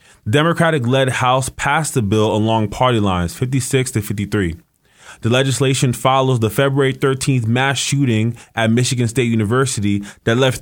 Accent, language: American, English